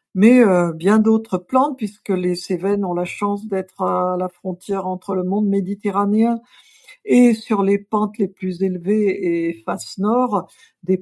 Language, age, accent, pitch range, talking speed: French, 50-69, French, 180-220 Hz, 165 wpm